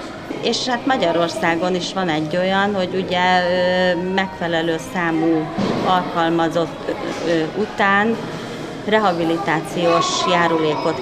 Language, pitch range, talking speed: Hungarian, 160-200 Hz, 80 wpm